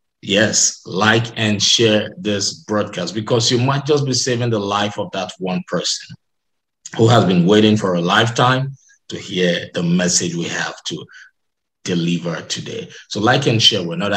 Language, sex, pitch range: English, male, 105-135 Hz